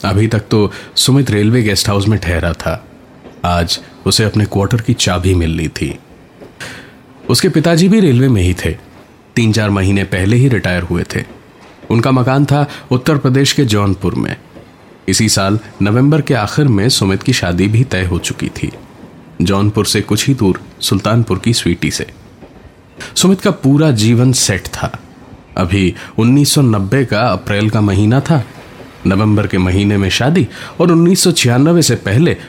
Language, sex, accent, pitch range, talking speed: Hindi, male, native, 100-140 Hz, 160 wpm